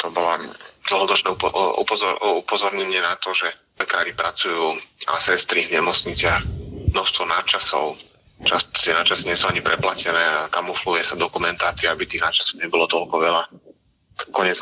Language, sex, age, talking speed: Slovak, male, 30-49, 135 wpm